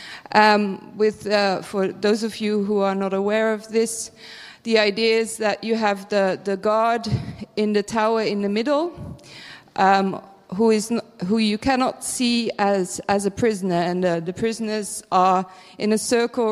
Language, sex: German, female